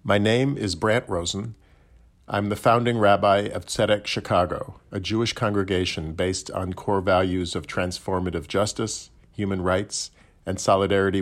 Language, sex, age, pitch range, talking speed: English, male, 50-69, 90-110 Hz, 140 wpm